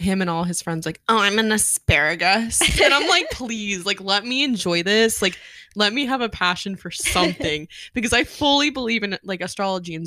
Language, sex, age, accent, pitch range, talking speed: English, female, 20-39, American, 175-225 Hz, 210 wpm